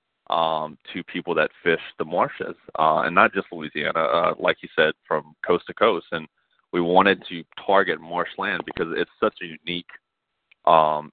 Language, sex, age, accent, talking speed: English, male, 30-49, American, 175 wpm